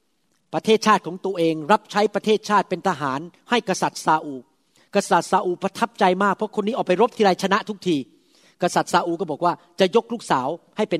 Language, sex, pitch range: Thai, male, 170-225 Hz